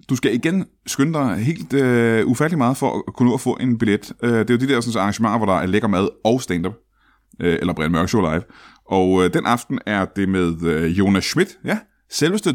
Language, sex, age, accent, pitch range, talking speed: Danish, male, 30-49, native, 100-125 Hz, 240 wpm